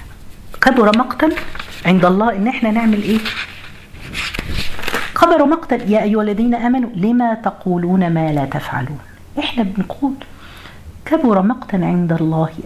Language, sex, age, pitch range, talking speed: Arabic, female, 50-69, 160-225 Hz, 120 wpm